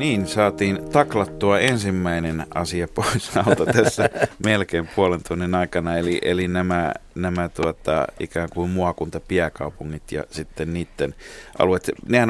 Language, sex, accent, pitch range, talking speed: Finnish, male, native, 85-120 Hz, 120 wpm